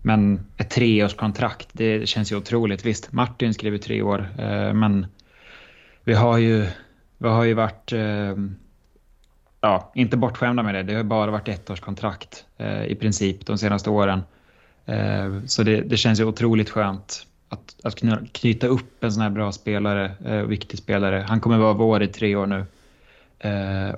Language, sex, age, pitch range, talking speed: Swedish, male, 20-39, 100-115 Hz, 180 wpm